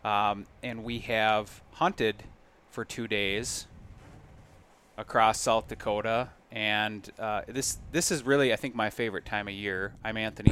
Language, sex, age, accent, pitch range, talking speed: English, male, 20-39, American, 100-115 Hz, 150 wpm